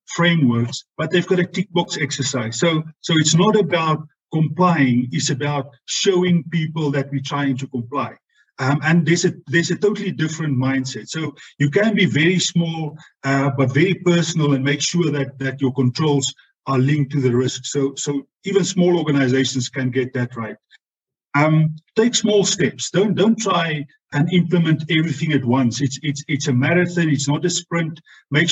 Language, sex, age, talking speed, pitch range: English, male, 50-69, 180 wpm, 140-170 Hz